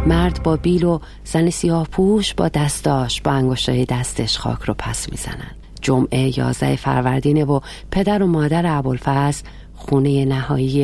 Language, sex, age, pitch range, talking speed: Persian, female, 40-59, 120-145 Hz, 140 wpm